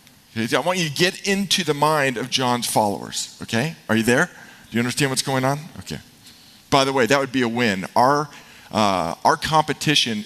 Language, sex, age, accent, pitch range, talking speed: English, male, 40-59, American, 105-145 Hz, 200 wpm